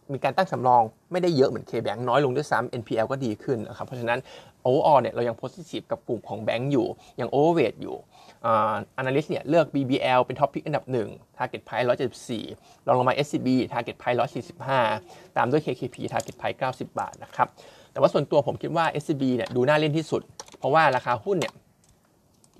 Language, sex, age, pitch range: Thai, male, 20-39, 120-145 Hz